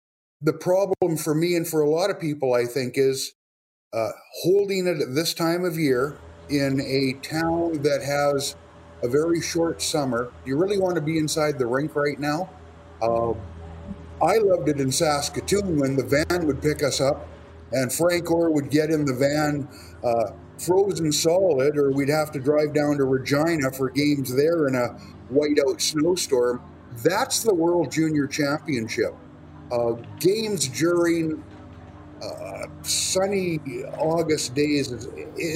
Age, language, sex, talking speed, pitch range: 50-69, English, male, 155 wpm, 120-160 Hz